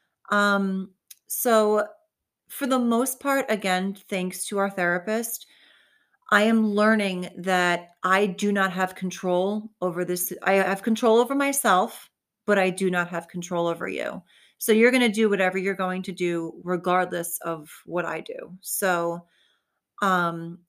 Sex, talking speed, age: female, 150 wpm, 30-49